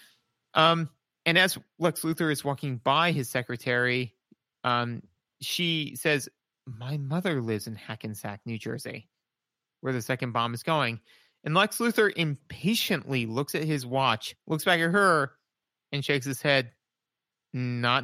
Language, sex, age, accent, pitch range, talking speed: English, male, 30-49, American, 130-180 Hz, 145 wpm